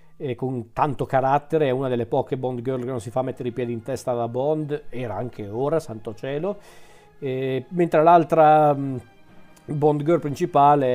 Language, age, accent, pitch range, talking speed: Italian, 40-59, native, 120-150 Hz, 170 wpm